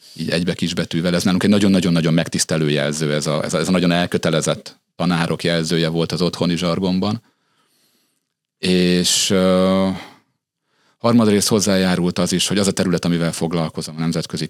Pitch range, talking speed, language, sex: 80-95 Hz, 155 wpm, Hungarian, male